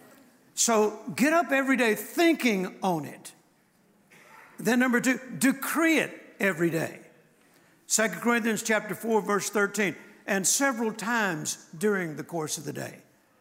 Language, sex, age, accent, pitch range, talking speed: English, male, 60-79, American, 210-265 Hz, 135 wpm